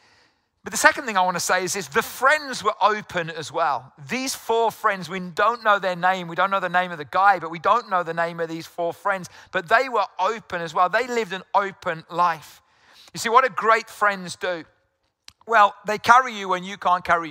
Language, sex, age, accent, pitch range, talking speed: English, male, 40-59, British, 175-215 Hz, 235 wpm